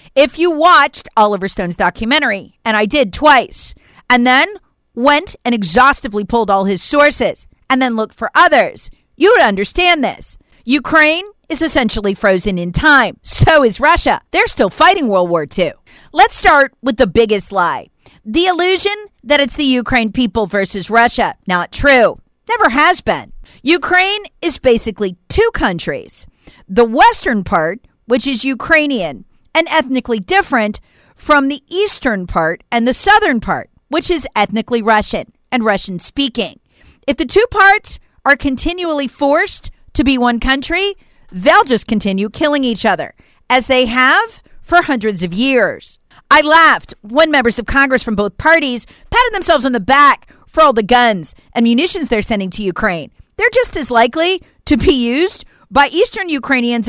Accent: American